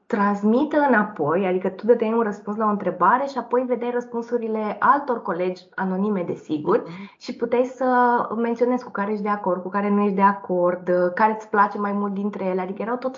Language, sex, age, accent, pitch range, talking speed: Romanian, female, 20-39, native, 185-230 Hz, 200 wpm